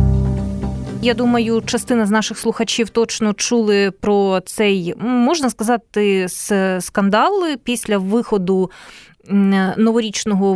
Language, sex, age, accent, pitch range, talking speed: Ukrainian, female, 20-39, native, 190-240 Hz, 90 wpm